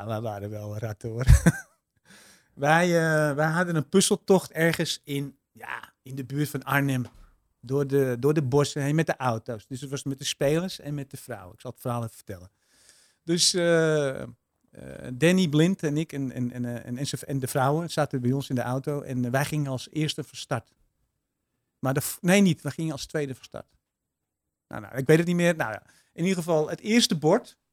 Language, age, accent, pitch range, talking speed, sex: Dutch, 50-69, Dutch, 120-155 Hz, 205 wpm, male